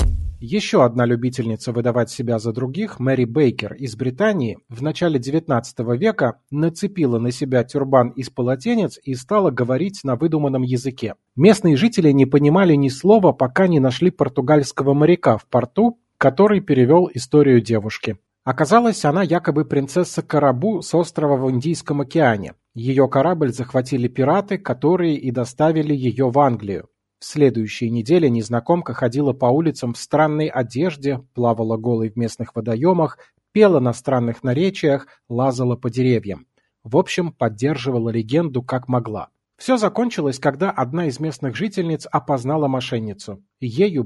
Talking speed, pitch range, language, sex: 140 wpm, 120-160 Hz, Russian, male